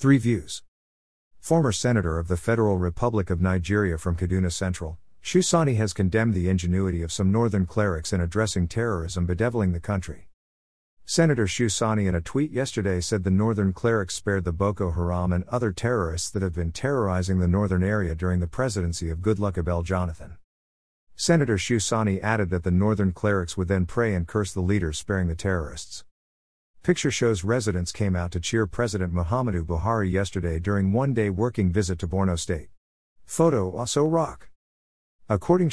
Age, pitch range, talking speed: 50-69, 90-115 Hz, 165 wpm